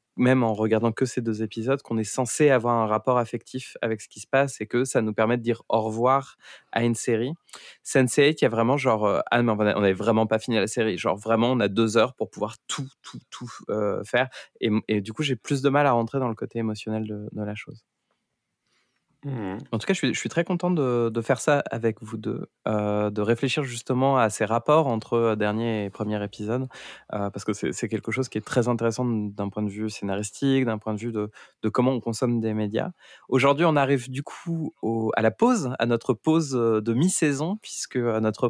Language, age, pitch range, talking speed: French, 20-39, 110-135 Hz, 230 wpm